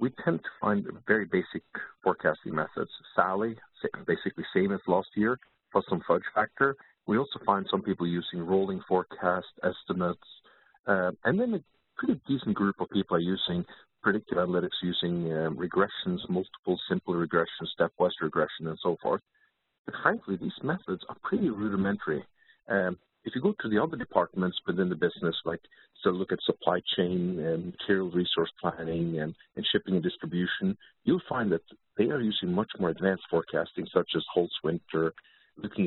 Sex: male